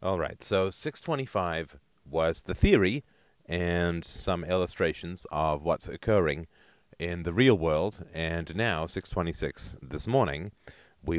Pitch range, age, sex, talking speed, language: 80-95 Hz, 40-59, male, 125 wpm, English